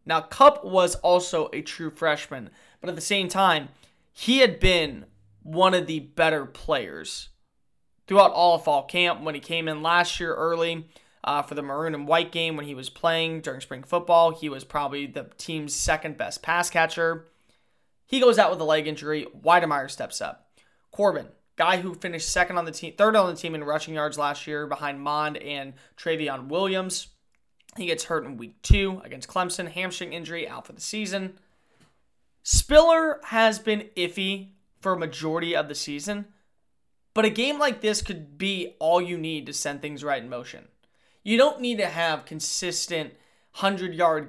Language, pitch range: English, 150-190 Hz